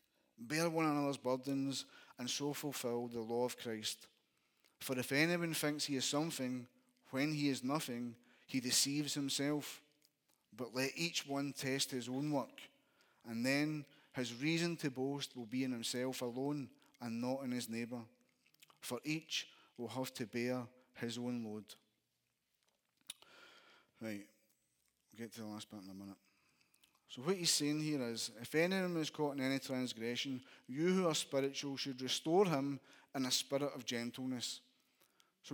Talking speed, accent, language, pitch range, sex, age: 160 wpm, British, English, 125-155 Hz, male, 30-49